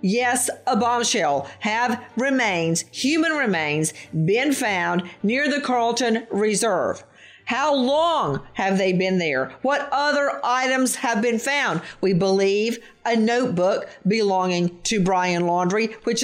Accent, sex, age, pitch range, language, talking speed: American, female, 50-69, 175-250 Hz, English, 125 wpm